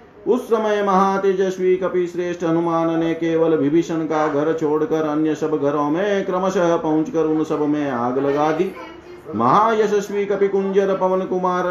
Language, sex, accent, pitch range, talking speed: Hindi, male, native, 155-185 Hz, 145 wpm